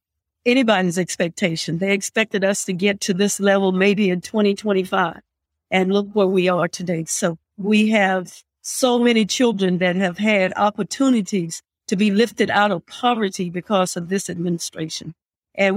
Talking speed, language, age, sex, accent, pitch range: 150 wpm, English, 50-69, female, American, 185-220 Hz